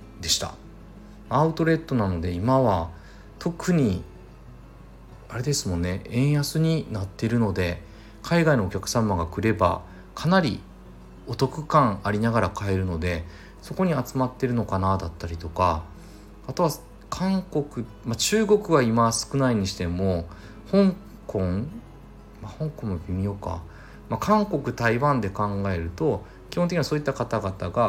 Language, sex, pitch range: Japanese, male, 90-130 Hz